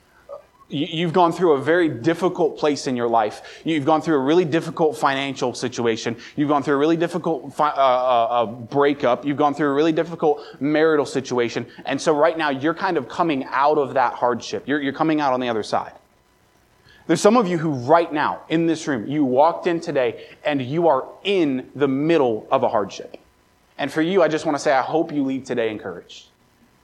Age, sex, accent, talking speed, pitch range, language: 20-39, male, American, 210 wpm, 125-165 Hz, English